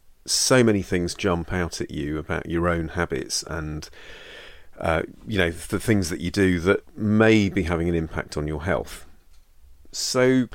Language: English